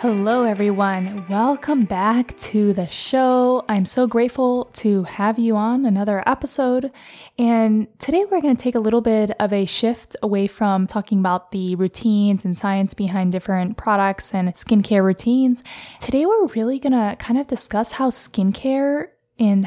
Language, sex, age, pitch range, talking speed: English, female, 10-29, 195-235 Hz, 160 wpm